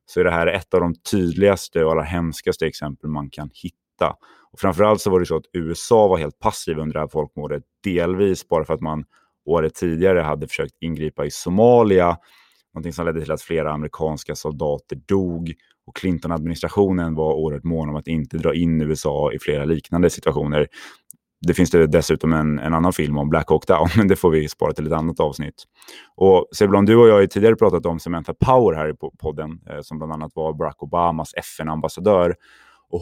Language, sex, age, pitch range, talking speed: English, male, 20-39, 80-90 Hz, 200 wpm